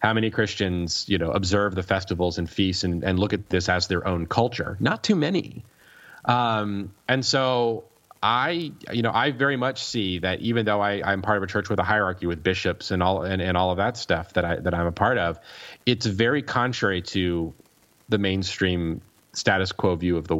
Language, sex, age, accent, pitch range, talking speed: English, male, 30-49, American, 90-110 Hz, 210 wpm